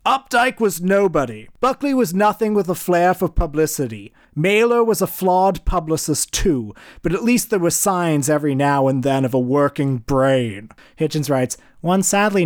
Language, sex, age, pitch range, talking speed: English, male, 30-49, 125-165 Hz, 170 wpm